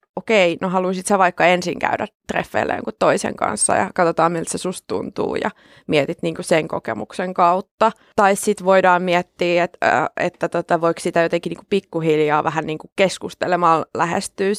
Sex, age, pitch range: female, 20-39, 170-200 Hz